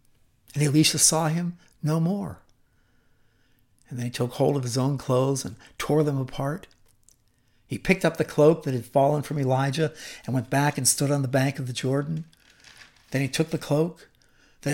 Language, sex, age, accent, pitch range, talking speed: English, male, 60-79, American, 125-185 Hz, 185 wpm